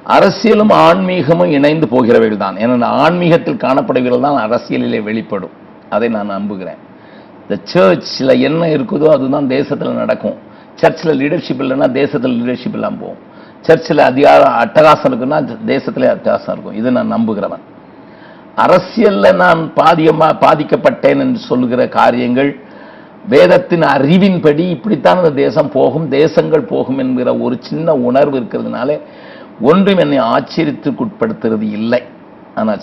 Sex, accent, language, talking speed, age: male, native, Tamil, 100 wpm, 50-69